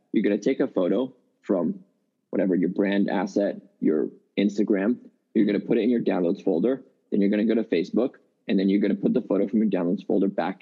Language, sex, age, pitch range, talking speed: English, male, 20-39, 100-110 Hz, 235 wpm